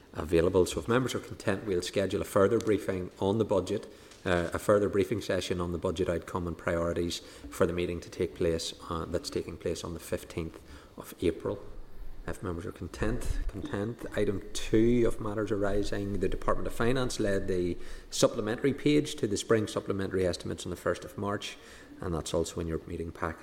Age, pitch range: 30-49, 85-105 Hz